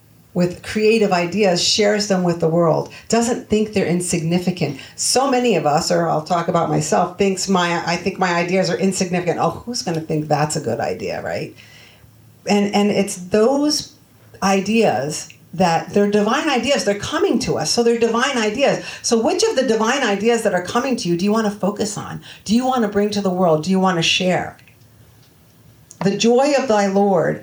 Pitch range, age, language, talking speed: 150-205 Hz, 50-69, English, 190 wpm